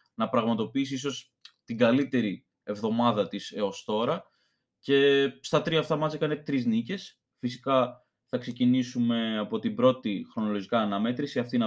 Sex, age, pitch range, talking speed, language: male, 20-39, 120-160 Hz, 140 wpm, Greek